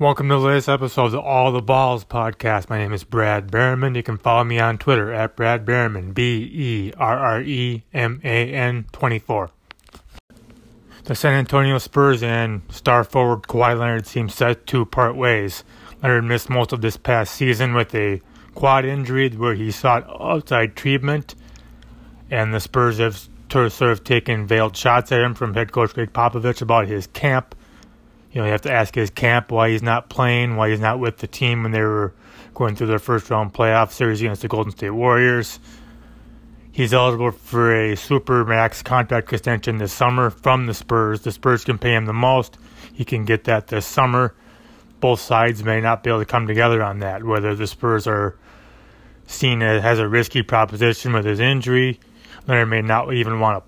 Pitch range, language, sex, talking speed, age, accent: 110-125 Hz, English, male, 180 wpm, 30-49, American